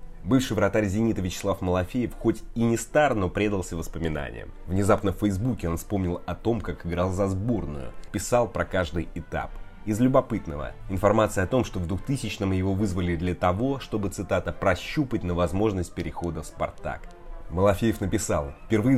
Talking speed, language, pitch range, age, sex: 160 wpm, Russian, 85-105 Hz, 20-39, male